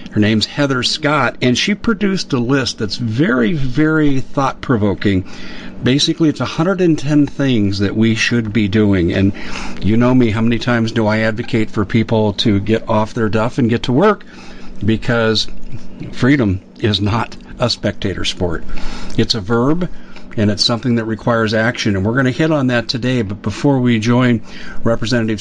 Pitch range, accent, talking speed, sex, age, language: 105-130 Hz, American, 170 wpm, male, 50-69, English